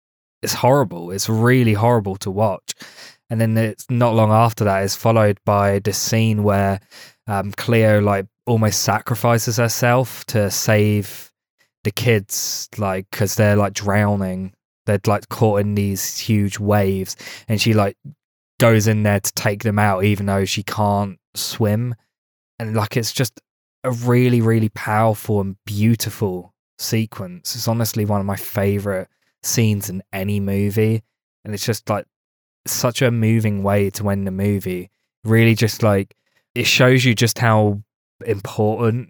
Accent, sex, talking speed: British, male, 150 wpm